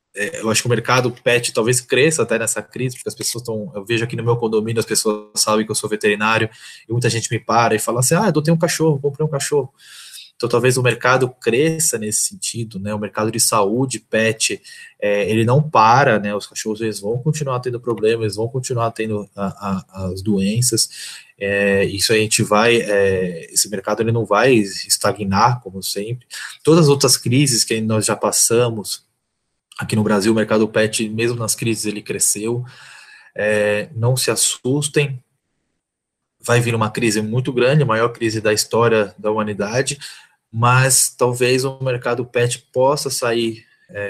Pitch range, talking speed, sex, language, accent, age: 105-125 Hz, 185 wpm, male, Portuguese, Brazilian, 20-39